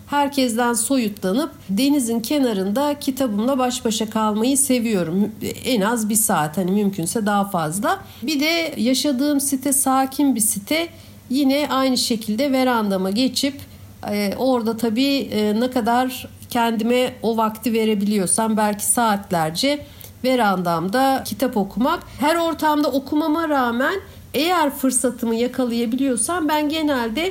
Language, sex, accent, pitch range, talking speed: Turkish, female, native, 220-280 Hz, 110 wpm